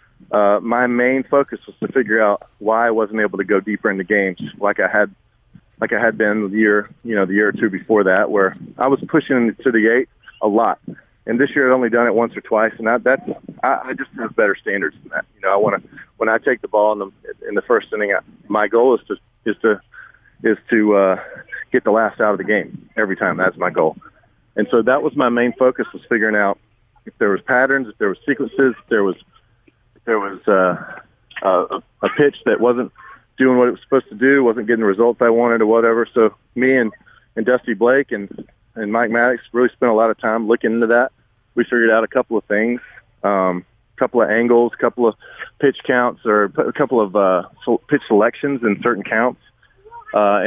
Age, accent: 40-59, American